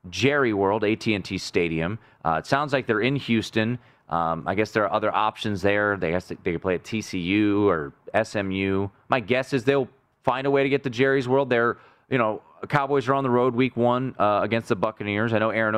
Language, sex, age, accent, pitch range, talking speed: English, male, 30-49, American, 100-130 Hz, 215 wpm